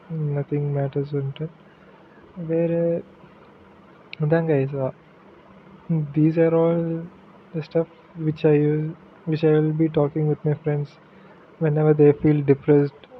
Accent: native